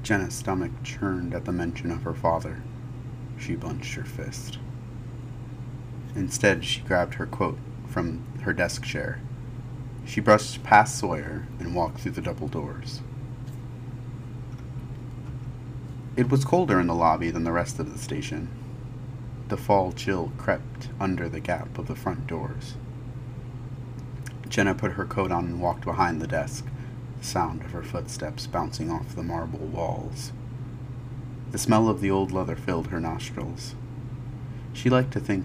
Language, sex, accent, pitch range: English, male, American, 115-125 Hz